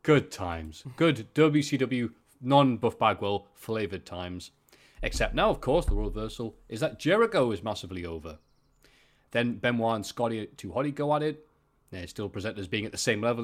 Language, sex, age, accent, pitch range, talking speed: English, male, 30-49, British, 105-135 Hz, 165 wpm